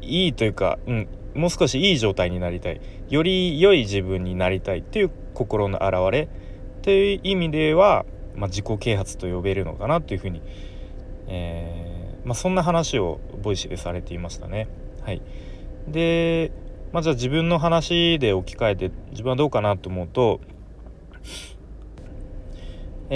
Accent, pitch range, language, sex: native, 90-115 Hz, Japanese, male